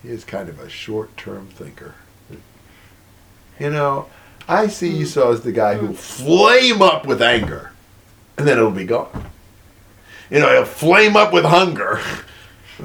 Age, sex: 50-69, male